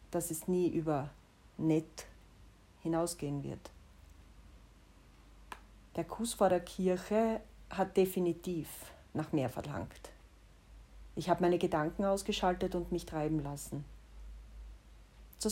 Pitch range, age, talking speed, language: 160-205 Hz, 40-59, 105 wpm, German